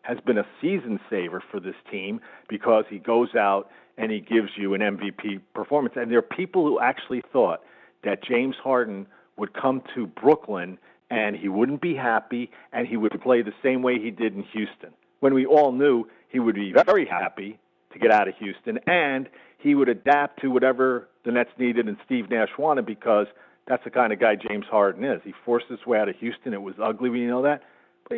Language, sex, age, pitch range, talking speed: English, male, 50-69, 105-135 Hz, 210 wpm